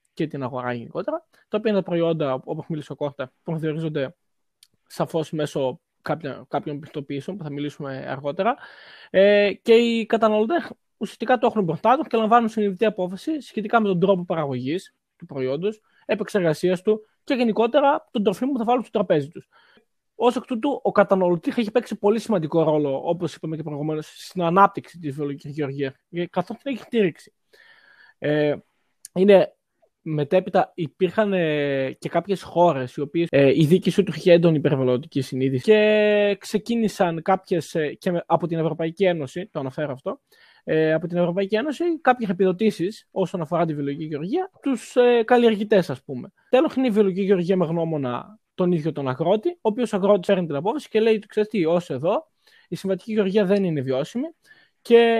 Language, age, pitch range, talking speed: Greek, 20-39, 155-220 Hz, 170 wpm